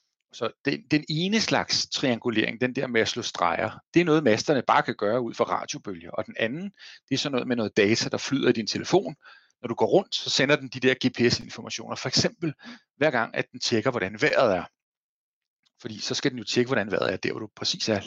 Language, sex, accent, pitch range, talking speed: Danish, male, native, 115-155 Hz, 235 wpm